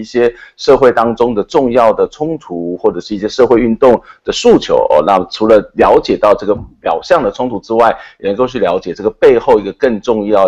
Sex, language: male, Chinese